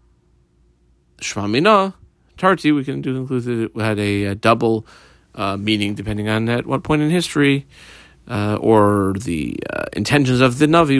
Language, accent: English, American